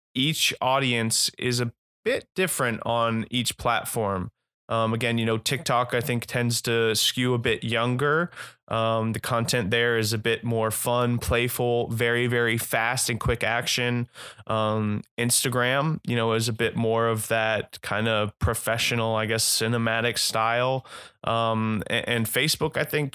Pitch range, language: 110-120 Hz, English